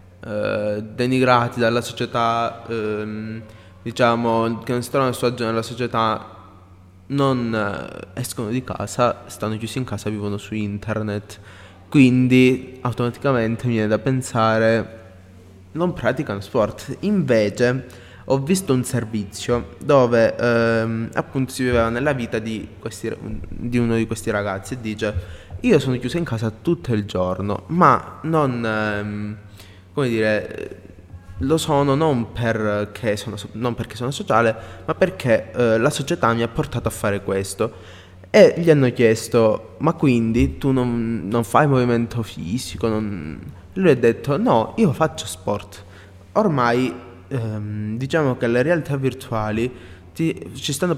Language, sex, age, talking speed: Italian, male, 20-39, 140 wpm